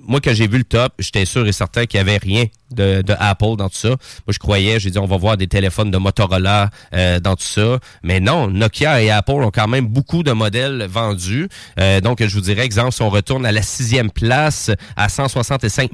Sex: male